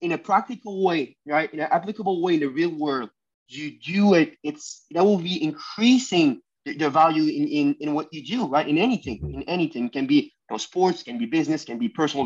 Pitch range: 140-180 Hz